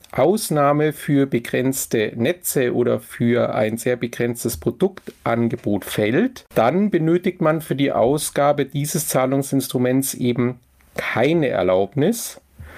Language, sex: German, male